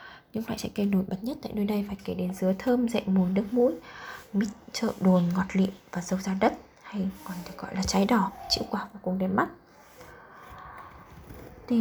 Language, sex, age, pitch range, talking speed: Vietnamese, female, 20-39, 190-220 Hz, 210 wpm